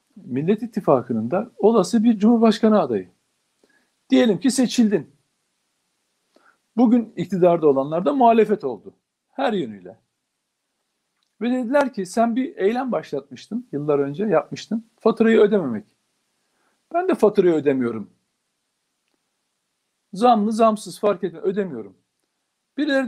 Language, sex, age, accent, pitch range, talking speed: Turkish, male, 60-79, native, 180-235 Hz, 105 wpm